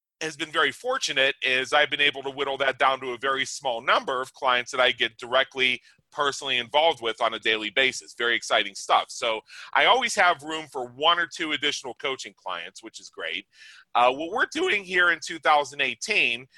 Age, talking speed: 30-49, 200 wpm